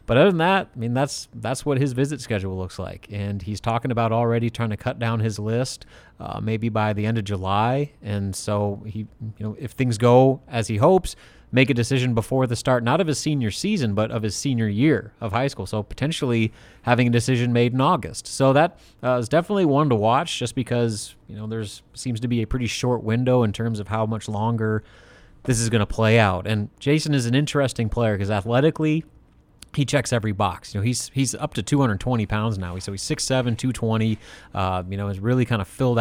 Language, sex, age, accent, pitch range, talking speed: English, male, 30-49, American, 105-125 Hz, 225 wpm